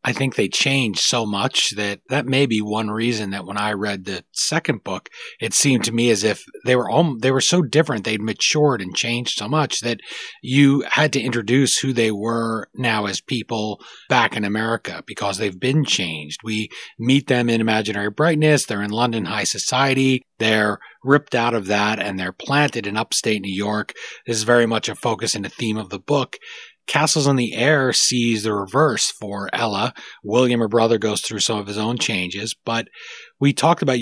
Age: 30-49